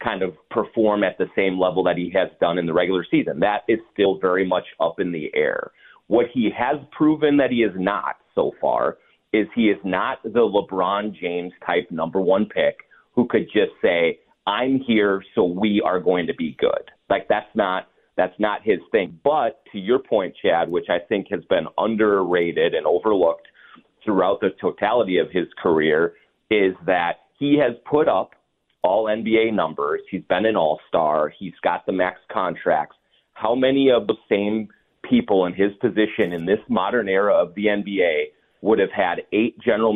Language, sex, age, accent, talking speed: English, male, 30-49, American, 185 wpm